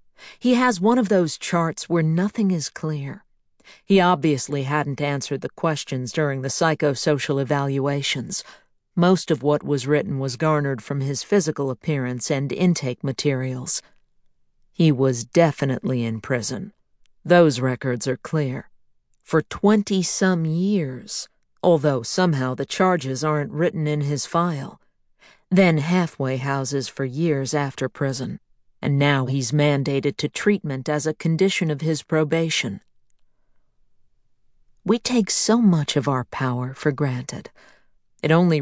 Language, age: English, 50-69